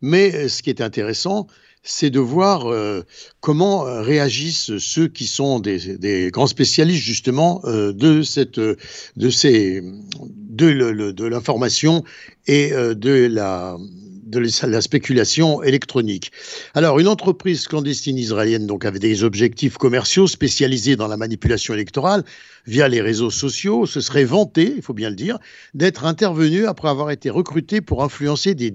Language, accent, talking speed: German, French, 150 wpm